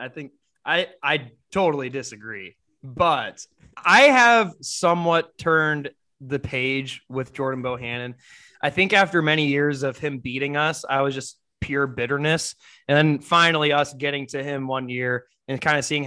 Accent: American